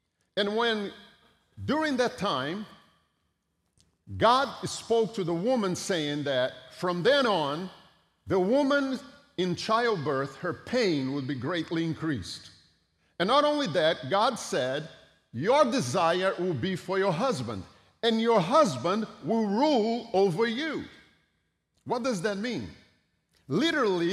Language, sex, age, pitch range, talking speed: English, male, 50-69, 150-220 Hz, 125 wpm